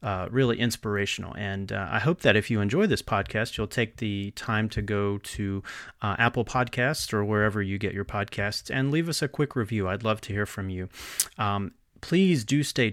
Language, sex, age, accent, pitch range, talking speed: English, male, 40-59, American, 100-125 Hz, 210 wpm